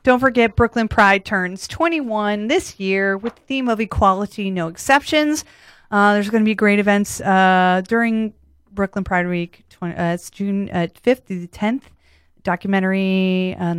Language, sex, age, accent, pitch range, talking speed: English, female, 30-49, American, 190-250 Hz, 160 wpm